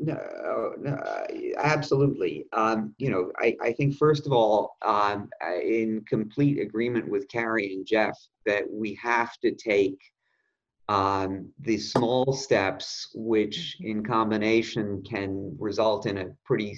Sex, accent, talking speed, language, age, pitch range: male, American, 130 wpm, English, 40-59, 105-135 Hz